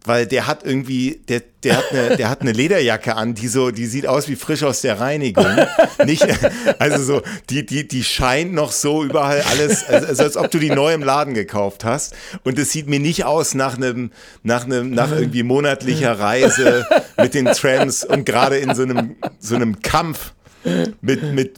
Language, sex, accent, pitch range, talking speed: German, male, German, 115-140 Hz, 195 wpm